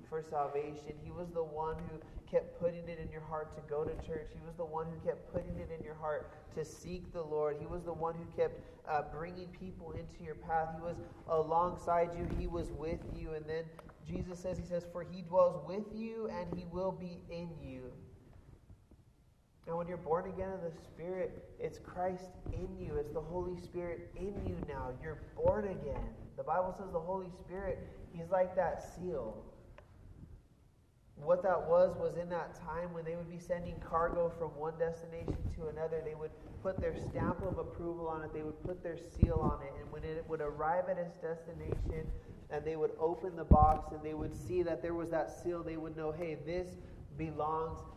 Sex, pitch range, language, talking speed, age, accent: male, 155-175 Hz, English, 205 wpm, 30-49, American